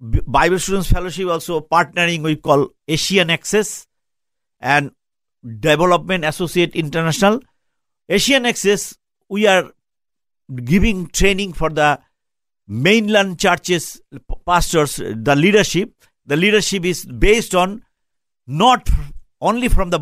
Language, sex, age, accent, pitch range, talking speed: English, male, 60-79, Indian, 150-200 Hz, 105 wpm